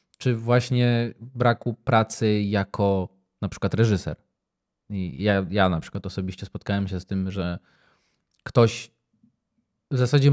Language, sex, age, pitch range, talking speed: Polish, male, 20-39, 100-125 Hz, 120 wpm